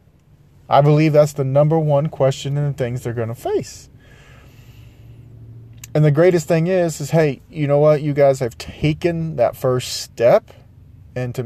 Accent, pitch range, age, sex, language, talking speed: American, 120-145 Hz, 30-49, male, English, 170 wpm